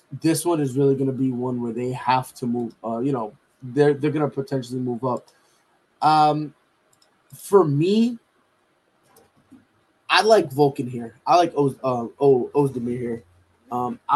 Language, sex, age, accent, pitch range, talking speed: English, male, 20-39, American, 130-160 Hz, 150 wpm